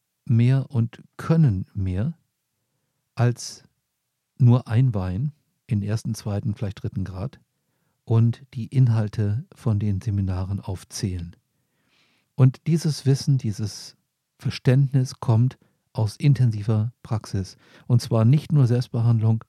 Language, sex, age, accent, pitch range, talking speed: German, male, 50-69, German, 105-135 Hz, 110 wpm